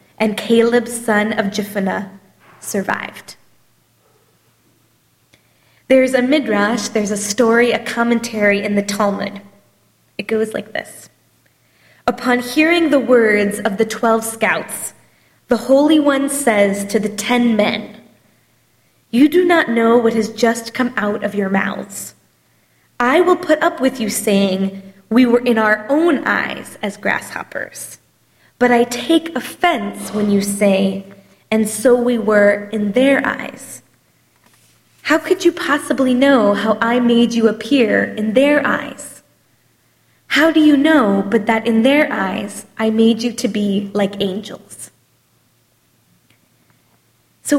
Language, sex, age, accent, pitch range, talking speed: English, female, 20-39, American, 210-260 Hz, 135 wpm